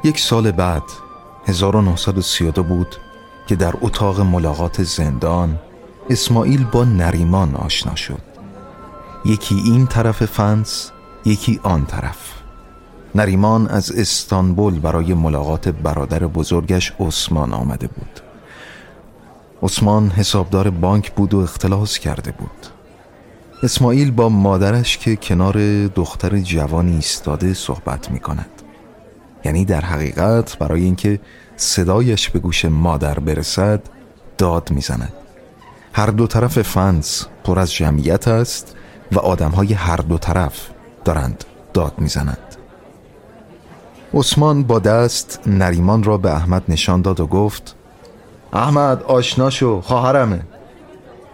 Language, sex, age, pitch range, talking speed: Persian, male, 30-49, 85-110 Hz, 110 wpm